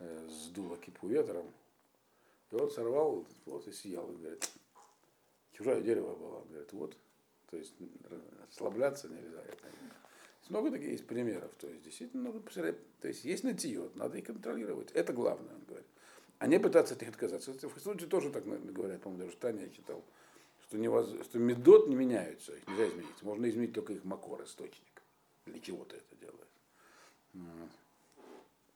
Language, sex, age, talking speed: Russian, male, 50-69, 160 wpm